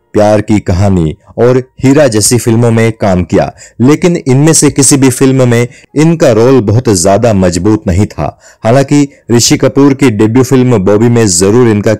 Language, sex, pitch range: Hindi, male, 100-125 Hz